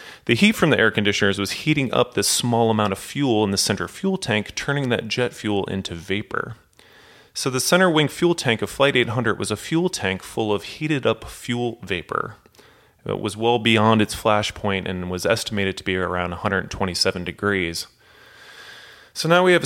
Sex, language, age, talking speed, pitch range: male, English, 30-49, 190 wpm, 95-125 Hz